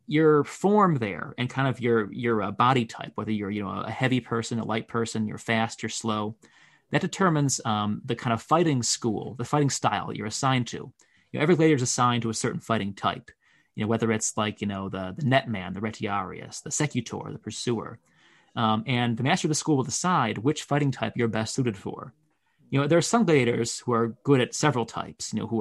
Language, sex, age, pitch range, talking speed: English, male, 30-49, 110-135 Hz, 225 wpm